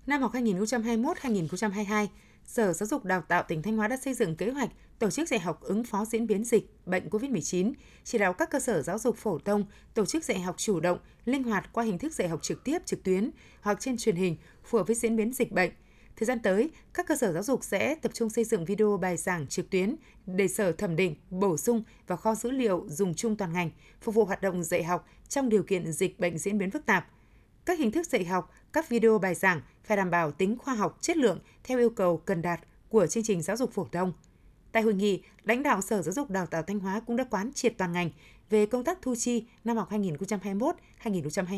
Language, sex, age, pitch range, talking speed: Vietnamese, female, 20-39, 185-235 Hz, 240 wpm